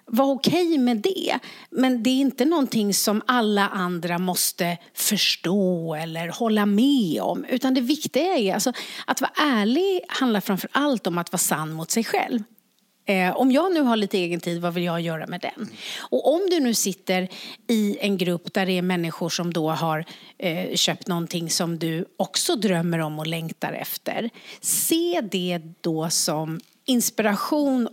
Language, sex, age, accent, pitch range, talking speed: English, female, 40-59, Swedish, 175-250 Hz, 170 wpm